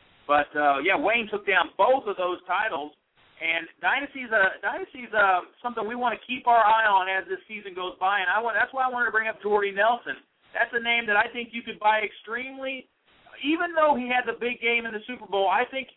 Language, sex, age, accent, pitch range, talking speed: English, male, 40-59, American, 195-255 Hz, 235 wpm